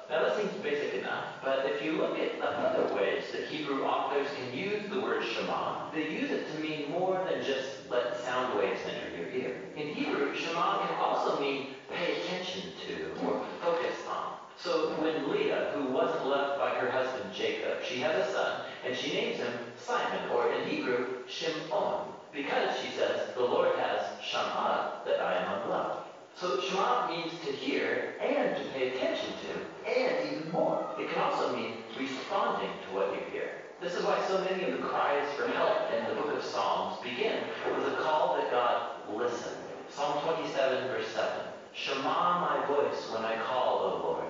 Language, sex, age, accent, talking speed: English, male, 40-59, American, 185 wpm